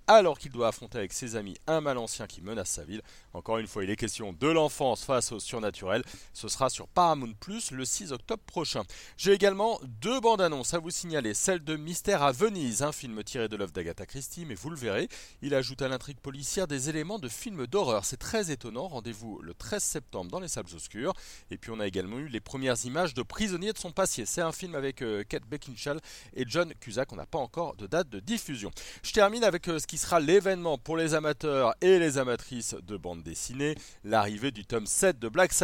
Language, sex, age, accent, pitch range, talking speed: French, male, 30-49, French, 115-175 Hz, 220 wpm